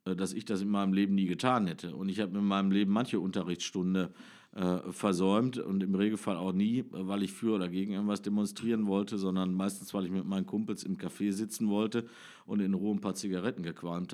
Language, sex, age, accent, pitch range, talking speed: German, male, 50-69, German, 95-115 Hz, 210 wpm